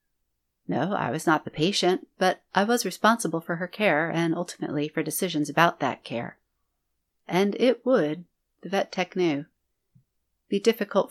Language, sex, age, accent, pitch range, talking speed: English, female, 40-59, American, 150-200 Hz, 155 wpm